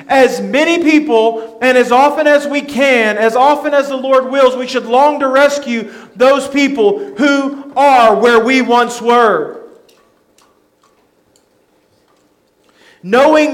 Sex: male